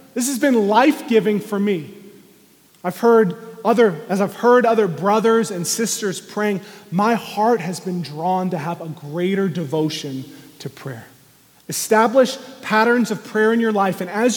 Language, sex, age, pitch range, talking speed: English, male, 30-49, 180-235 Hz, 160 wpm